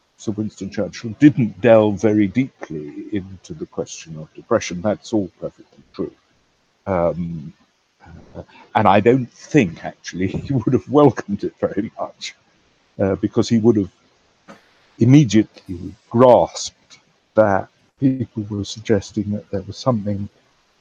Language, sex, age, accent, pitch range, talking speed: English, male, 60-79, British, 95-120 Hz, 130 wpm